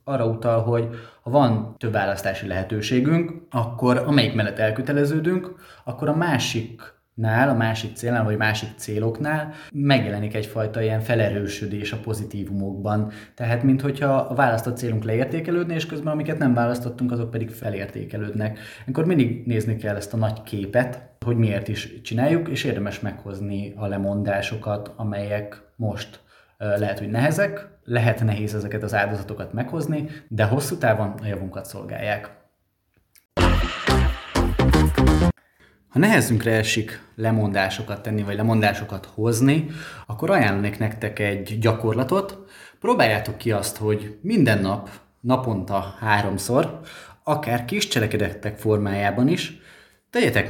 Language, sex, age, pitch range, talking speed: Hungarian, male, 20-39, 105-125 Hz, 120 wpm